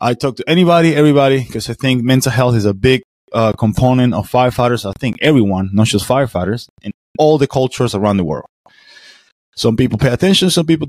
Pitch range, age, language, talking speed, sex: 110-135 Hz, 20-39, English, 200 wpm, male